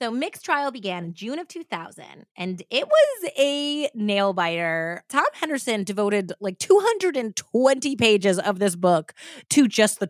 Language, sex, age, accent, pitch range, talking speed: English, female, 20-39, American, 185-260 Hz, 150 wpm